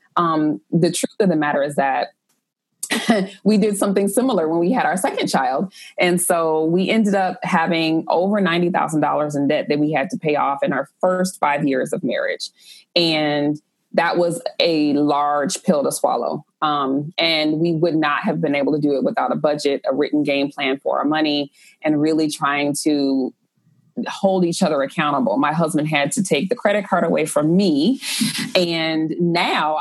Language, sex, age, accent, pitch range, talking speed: English, female, 20-39, American, 150-185 Hz, 185 wpm